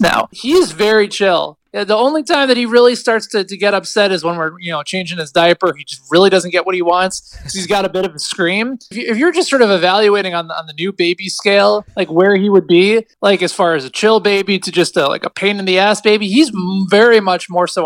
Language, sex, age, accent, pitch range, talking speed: English, male, 20-39, American, 180-240 Hz, 260 wpm